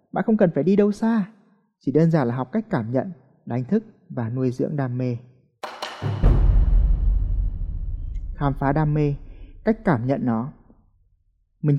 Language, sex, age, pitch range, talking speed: Vietnamese, male, 20-39, 130-190 Hz, 160 wpm